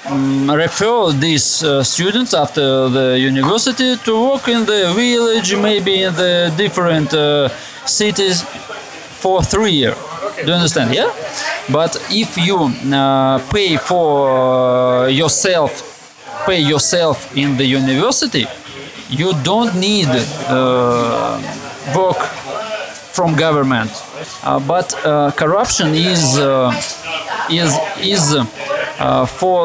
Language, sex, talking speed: Danish, male, 115 wpm